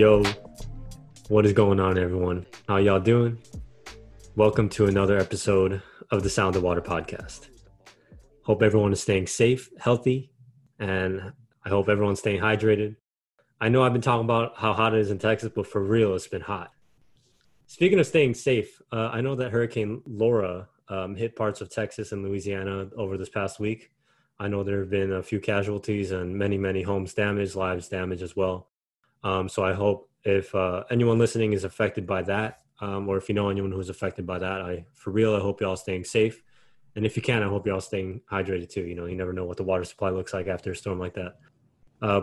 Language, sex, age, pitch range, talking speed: English, male, 20-39, 95-115 Hz, 205 wpm